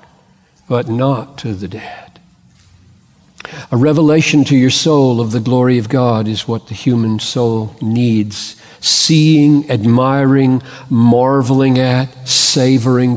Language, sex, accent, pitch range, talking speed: English, male, American, 120-150 Hz, 120 wpm